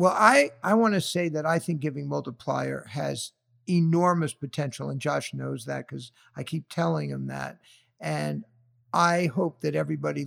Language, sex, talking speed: English, male, 165 wpm